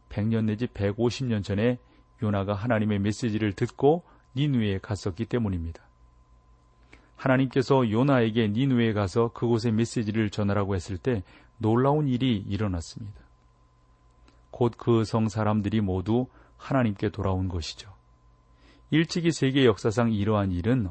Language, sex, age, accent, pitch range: Korean, male, 40-59, native, 95-125 Hz